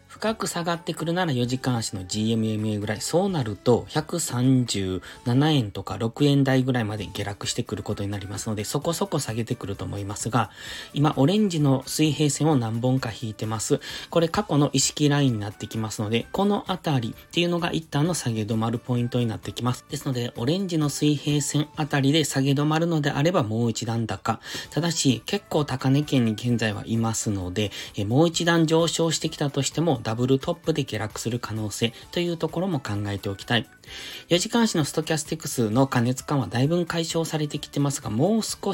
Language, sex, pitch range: Japanese, male, 110-160 Hz